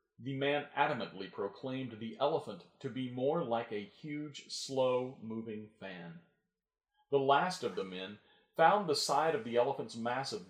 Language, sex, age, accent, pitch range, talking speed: English, male, 40-59, American, 110-165 Hz, 150 wpm